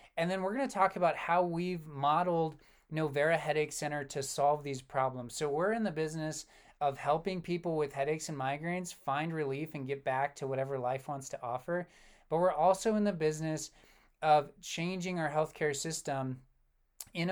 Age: 20-39